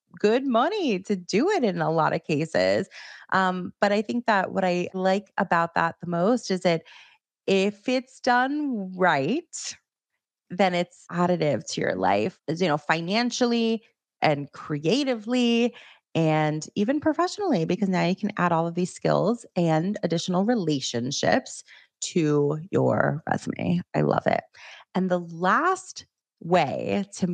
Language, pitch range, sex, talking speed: English, 165-230 Hz, female, 145 wpm